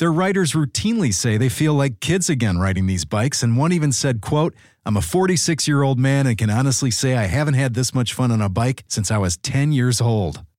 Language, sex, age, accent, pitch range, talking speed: English, male, 50-69, American, 110-155 Hz, 225 wpm